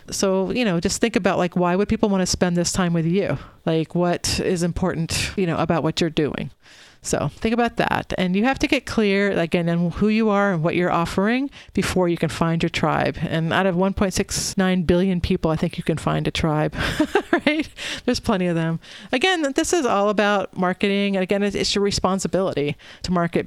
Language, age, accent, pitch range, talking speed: English, 40-59, American, 170-200 Hz, 210 wpm